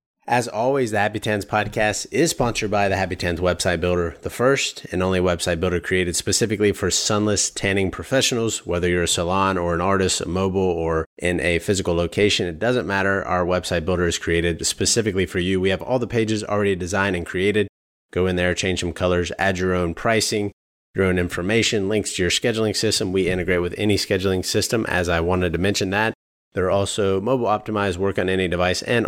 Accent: American